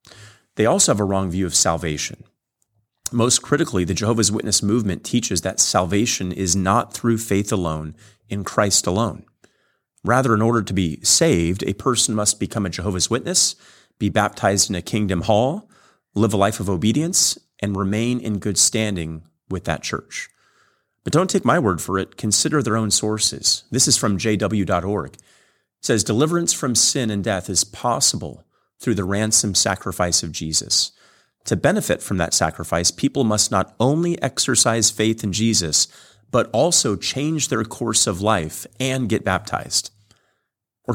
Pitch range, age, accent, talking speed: 95-115 Hz, 30-49, American, 165 wpm